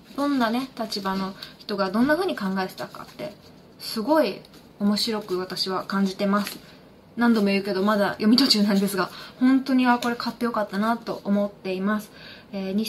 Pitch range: 200-255 Hz